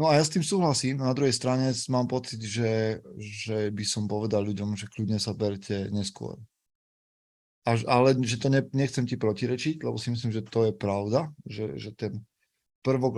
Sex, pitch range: male, 105-125 Hz